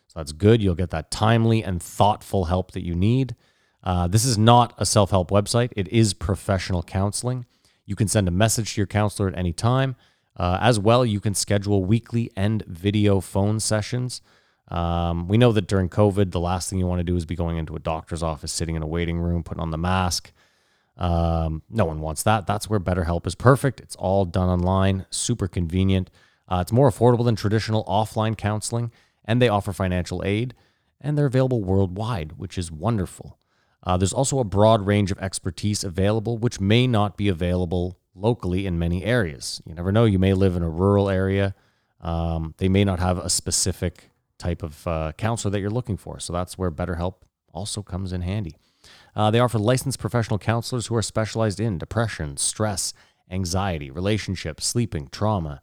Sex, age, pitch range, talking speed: male, 30-49, 90-110 Hz, 190 wpm